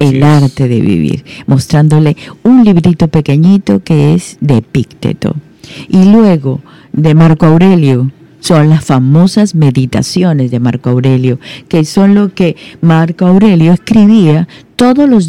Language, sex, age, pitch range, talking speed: Spanish, female, 50-69, 135-175 Hz, 130 wpm